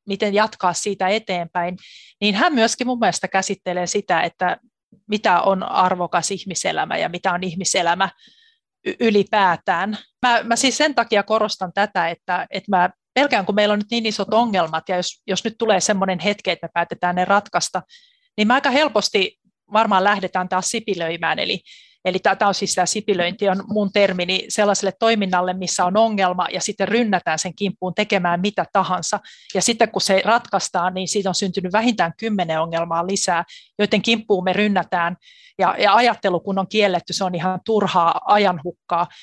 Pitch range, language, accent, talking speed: 180-210 Hz, Finnish, native, 170 wpm